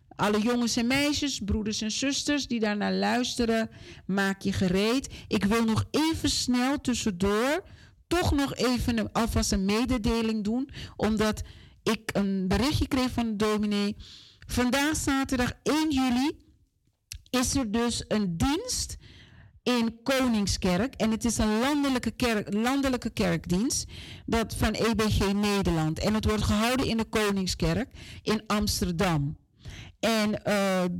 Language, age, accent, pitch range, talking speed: Dutch, 40-59, Dutch, 195-250 Hz, 130 wpm